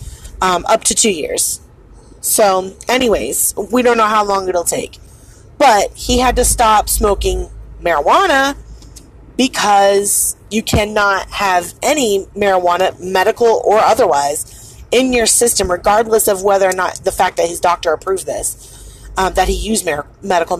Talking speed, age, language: 145 wpm, 30-49, English